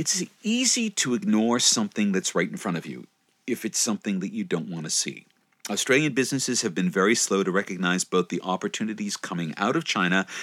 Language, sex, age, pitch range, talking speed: English, male, 40-59, 90-130 Hz, 200 wpm